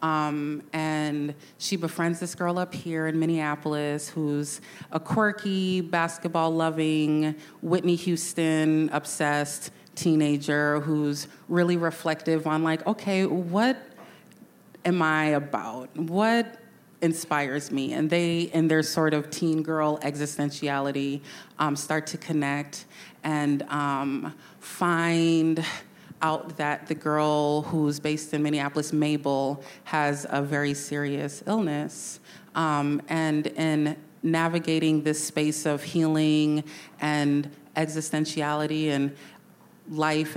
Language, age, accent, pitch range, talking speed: English, 30-49, American, 150-165 Hz, 105 wpm